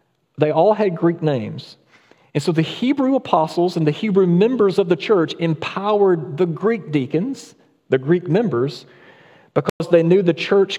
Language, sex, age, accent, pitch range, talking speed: English, male, 40-59, American, 140-180 Hz, 160 wpm